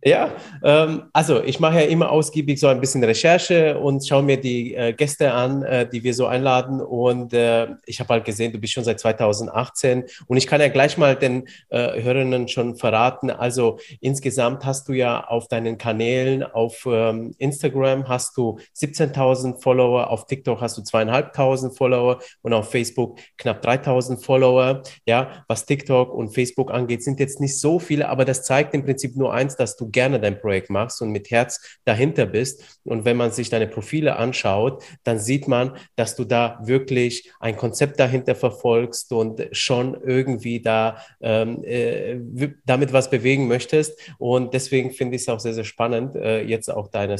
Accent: German